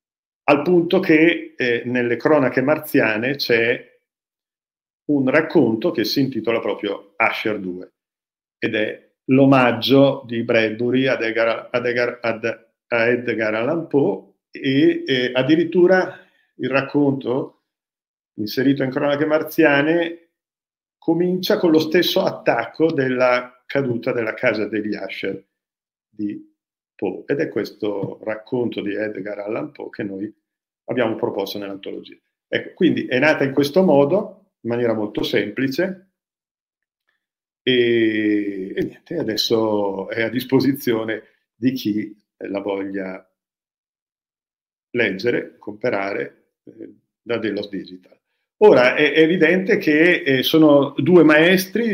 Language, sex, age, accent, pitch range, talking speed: Italian, male, 50-69, native, 115-160 Hz, 115 wpm